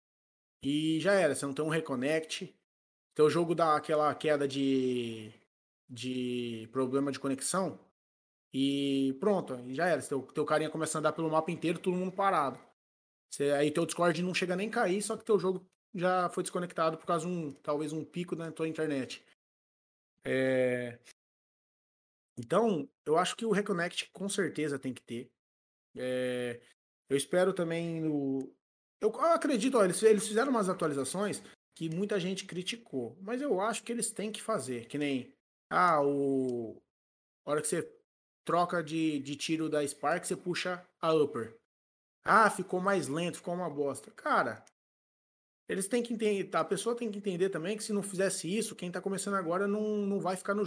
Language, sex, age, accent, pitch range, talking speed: Portuguese, male, 20-39, Brazilian, 140-195 Hz, 170 wpm